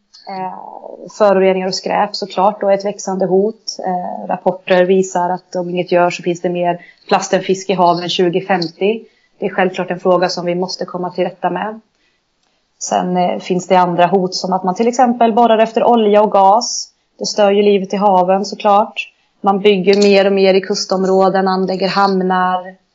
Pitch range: 185-210 Hz